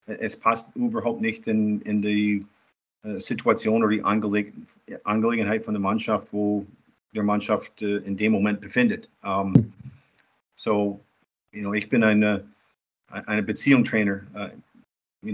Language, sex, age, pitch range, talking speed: German, male, 40-59, 105-125 Hz, 135 wpm